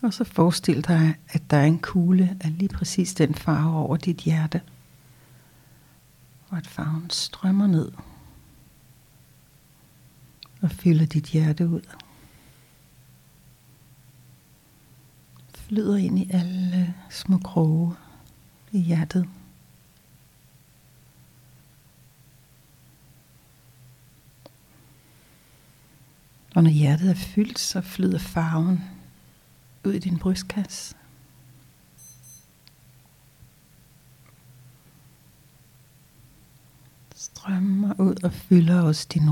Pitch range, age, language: 130-180 Hz, 60-79, Danish